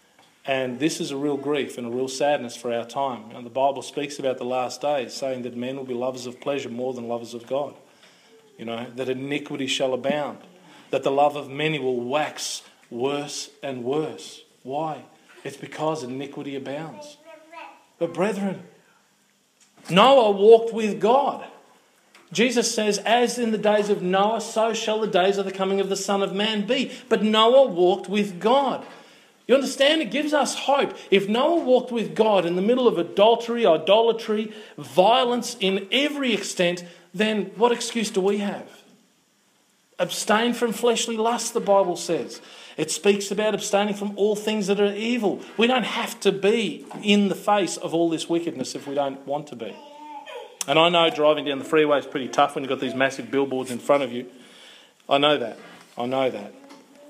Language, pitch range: English, 145-230 Hz